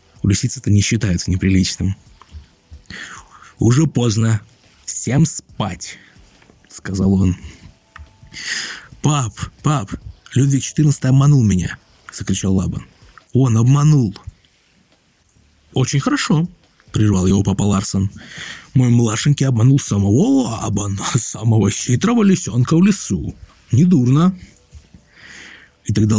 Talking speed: 90 wpm